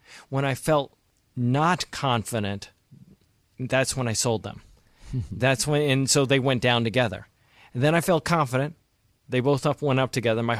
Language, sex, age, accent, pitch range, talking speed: English, male, 40-59, American, 115-140 Hz, 170 wpm